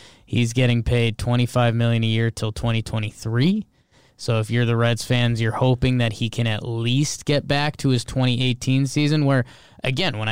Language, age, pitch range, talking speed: English, 20-39, 120-155 Hz, 180 wpm